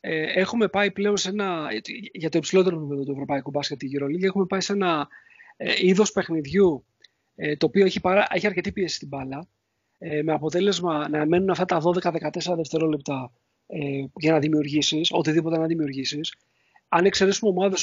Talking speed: 150 wpm